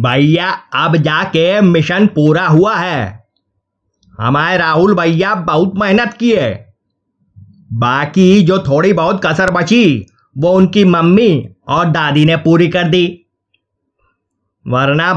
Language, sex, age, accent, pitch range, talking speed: Hindi, male, 30-49, native, 125-185 Hz, 115 wpm